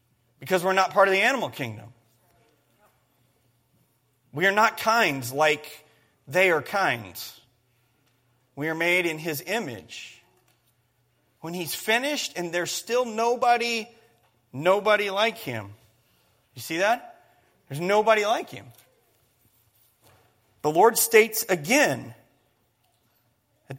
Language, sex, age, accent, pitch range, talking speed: English, male, 30-49, American, 120-190 Hz, 110 wpm